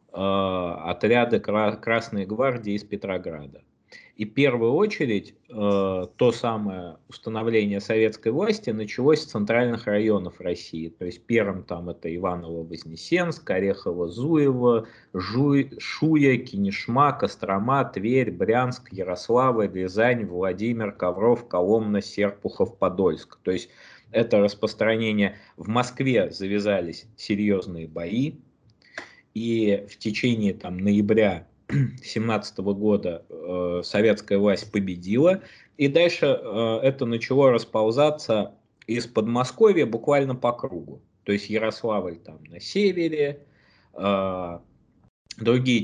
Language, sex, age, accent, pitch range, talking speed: Russian, male, 20-39, native, 95-120 Hz, 100 wpm